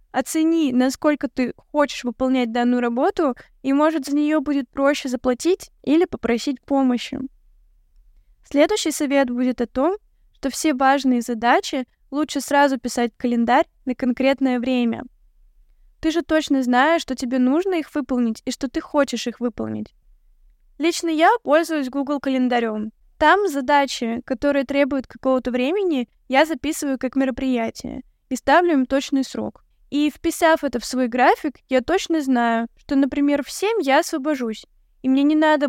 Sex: female